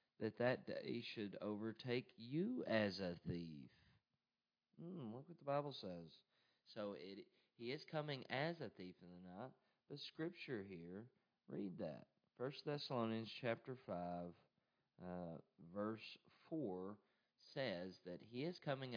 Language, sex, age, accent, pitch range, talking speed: English, male, 40-59, American, 85-130 Hz, 135 wpm